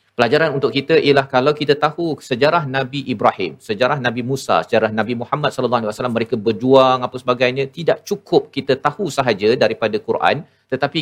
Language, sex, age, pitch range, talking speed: Malayalam, male, 40-59, 115-140 Hz, 170 wpm